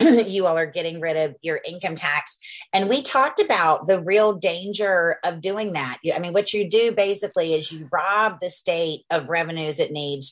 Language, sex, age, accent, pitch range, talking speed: English, female, 30-49, American, 155-205 Hz, 200 wpm